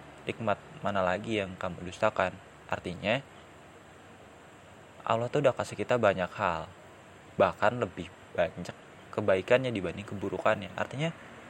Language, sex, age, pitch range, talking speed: Indonesian, male, 20-39, 100-125 Hz, 110 wpm